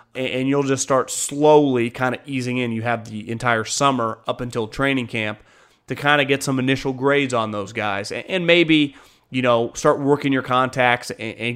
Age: 30-49